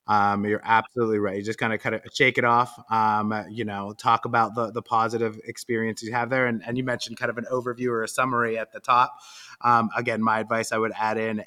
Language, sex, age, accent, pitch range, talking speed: English, male, 30-49, American, 110-125 Hz, 245 wpm